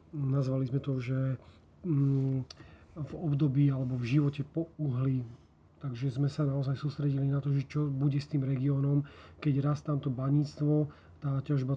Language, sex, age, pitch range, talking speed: Slovak, male, 40-59, 135-150 Hz, 155 wpm